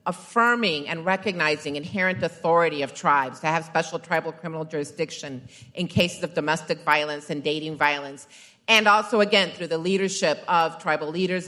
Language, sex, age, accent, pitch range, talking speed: English, female, 40-59, American, 150-180 Hz, 155 wpm